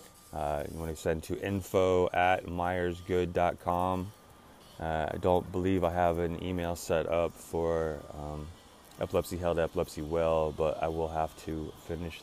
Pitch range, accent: 85-95 Hz, American